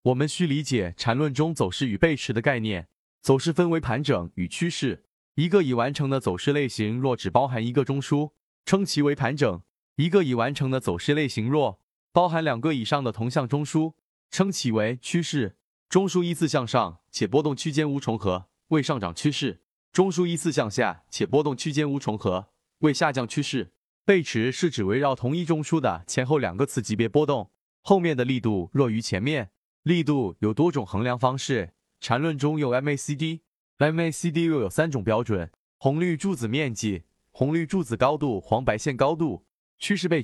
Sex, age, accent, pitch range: male, 30-49, native, 120-160 Hz